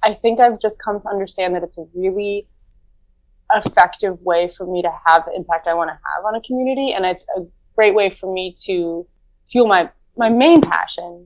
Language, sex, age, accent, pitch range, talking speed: English, female, 20-39, American, 170-205 Hz, 210 wpm